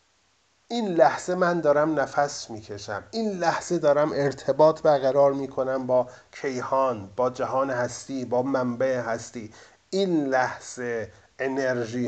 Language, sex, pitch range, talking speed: Persian, male, 120-145 Hz, 115 wpm